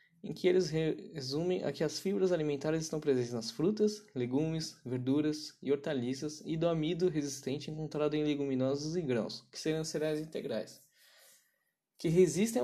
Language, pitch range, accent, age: Portuguese, 145-185 Hz, Brazilian, 10-29